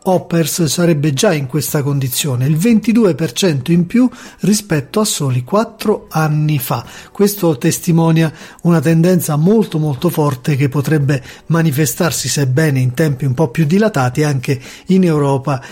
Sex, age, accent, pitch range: male, 40-59, native, 140-185 Hz